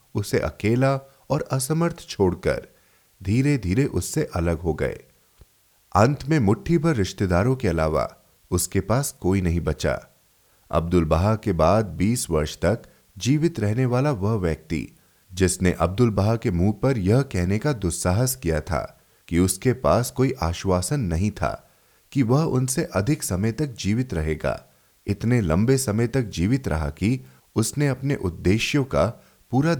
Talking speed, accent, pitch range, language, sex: 110 wpm, native, 85-125 Hz, Hindi, male